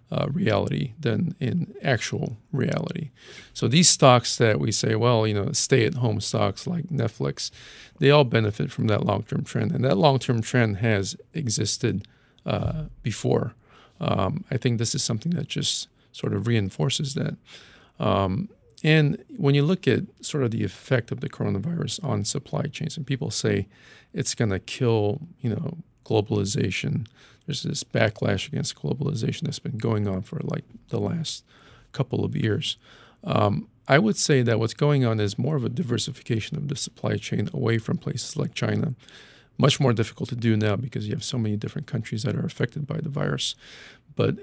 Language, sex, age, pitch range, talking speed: English, male, 50-69, 110-145 Hz, 175 wpm